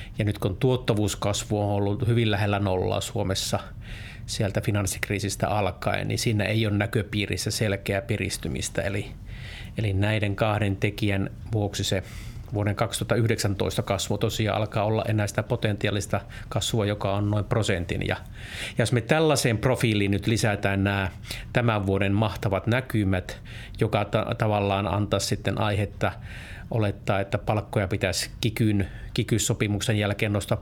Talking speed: 135 wpm